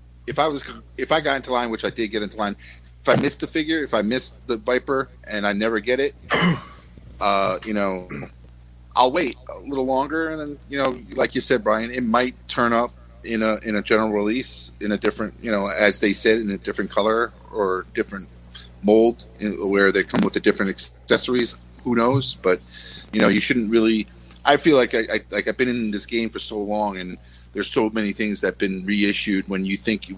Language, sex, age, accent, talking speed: English, male, 40-59, American, 225 wpm